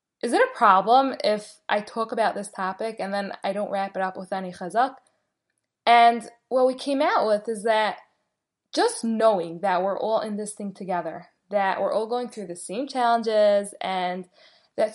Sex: female